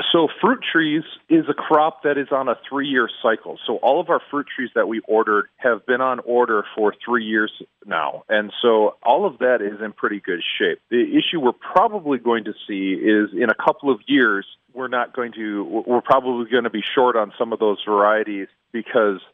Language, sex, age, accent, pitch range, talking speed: English, male, 40-59, American, 105-140 Hz, 215 wpm